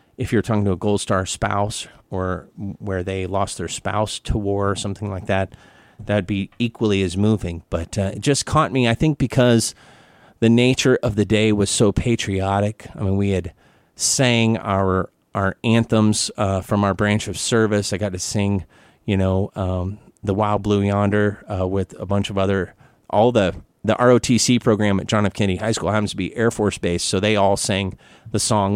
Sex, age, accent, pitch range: male, 30-49, American, 100-115 Hz